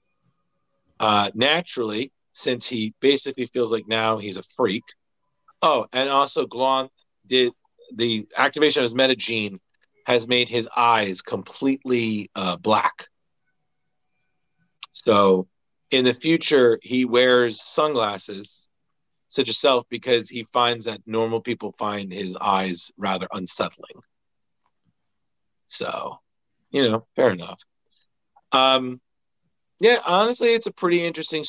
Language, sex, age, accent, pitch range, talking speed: English, male, 40-59, American, 105-130 Hz, 115 wpm